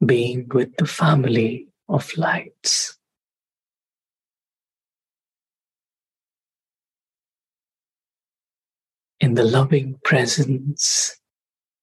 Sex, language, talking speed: male, English, 50 wpm